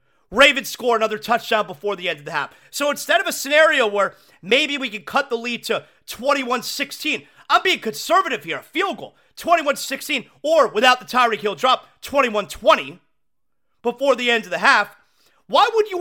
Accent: American